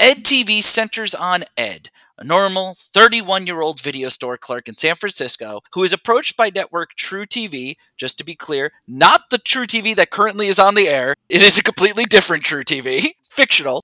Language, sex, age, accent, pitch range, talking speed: English, male, 30-49, American, 140-210 Hz, 185 wpm